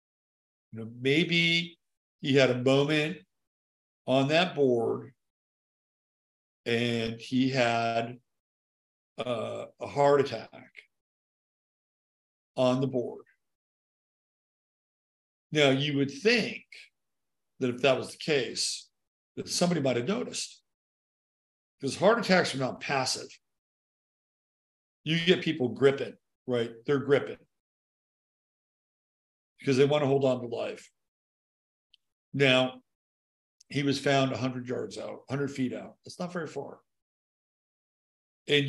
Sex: male